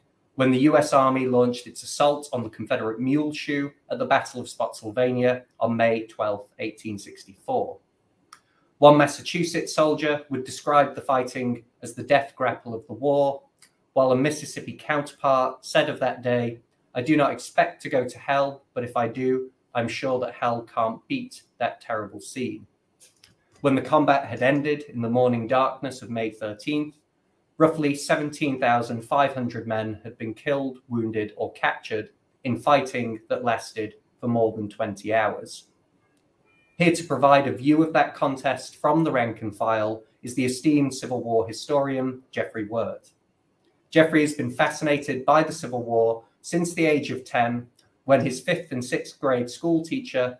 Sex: male